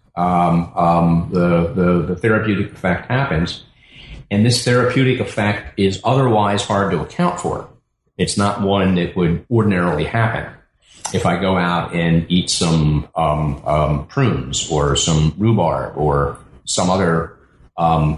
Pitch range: 85-105 Hz